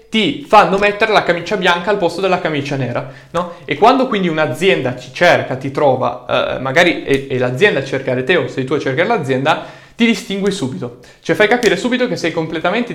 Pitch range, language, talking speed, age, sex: 135-180 Hz, Italian, 205 wpm, 20-39, male